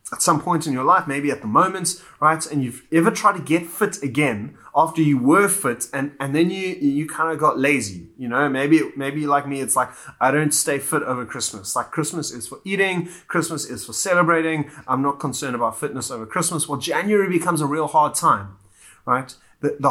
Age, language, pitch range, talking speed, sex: 30-49, English, 125-165 Hz, 215 wpm, male